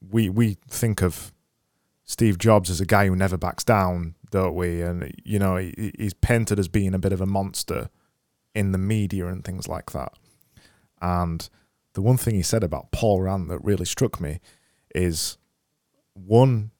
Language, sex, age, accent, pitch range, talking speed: English, male, 20-39, British, 95-110 Hz, 180 wpm